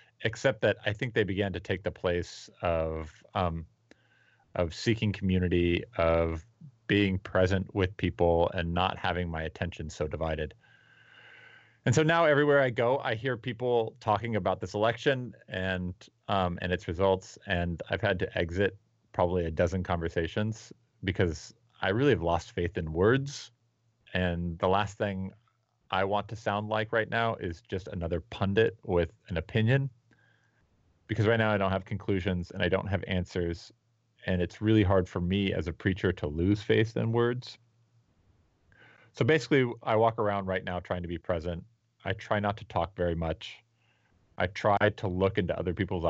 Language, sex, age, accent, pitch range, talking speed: English, male, 30-49, American, 90-110 Hz, 170 wpm